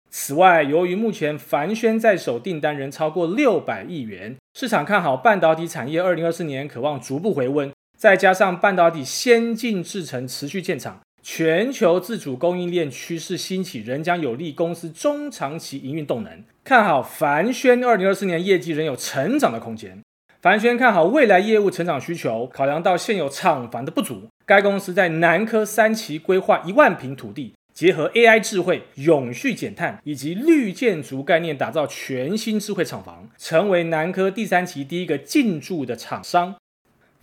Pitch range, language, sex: 150-210 Hz, Chinese, male